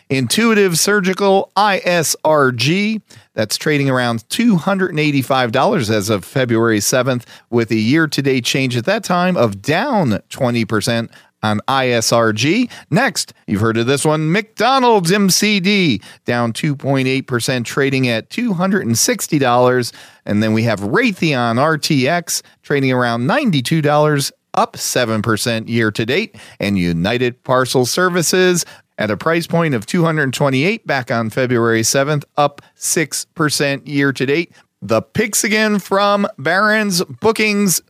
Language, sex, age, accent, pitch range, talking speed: English, male, 40-59, American, 125-185 Hz, 115 wpm